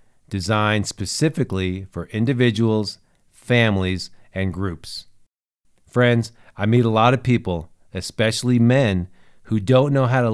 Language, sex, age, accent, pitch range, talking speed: English, male, 40-59, American, 95-120 Hz, 120 wpm